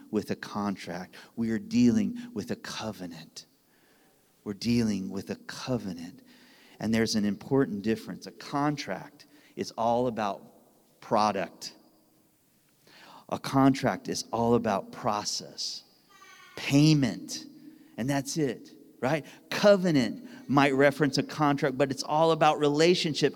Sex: male